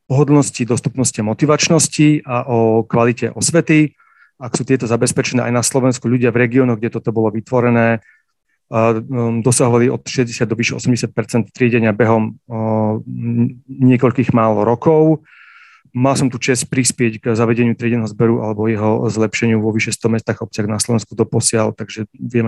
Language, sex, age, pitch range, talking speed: Slovak, male, 40-59, 115-130 Hz, 145 wpm